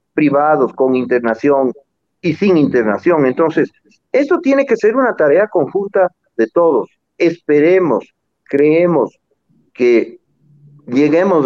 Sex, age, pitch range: male, 50-69, 125-180 Hz